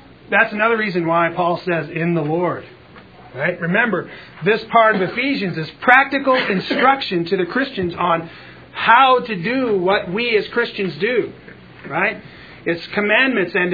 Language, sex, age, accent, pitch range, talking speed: English, male, 40-59, American, 170-225 Hz, 150 wpm